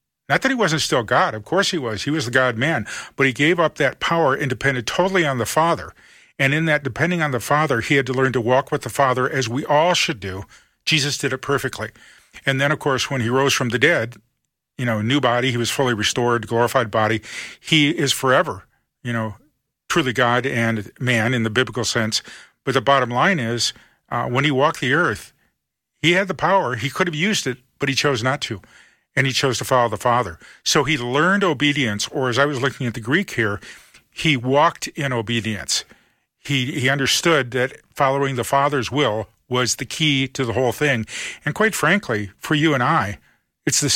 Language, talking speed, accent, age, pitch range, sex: English, 215 wpm, American, 40-59, 120-145 Hz, male